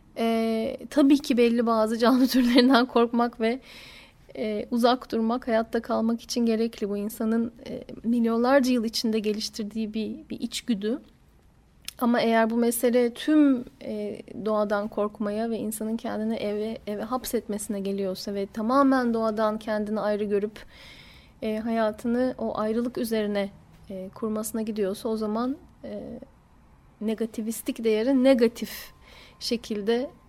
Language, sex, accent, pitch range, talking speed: Turkish, female, native, 215-260 Hz, 125 wpm